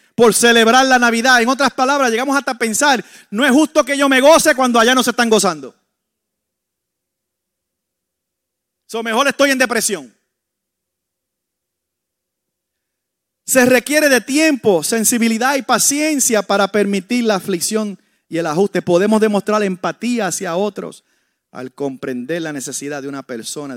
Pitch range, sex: 140-230 Hz, male